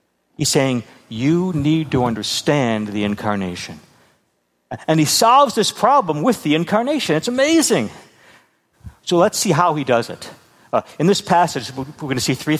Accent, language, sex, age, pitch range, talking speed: American, English, male, 60-79, 125-175 Hz, 160 wpm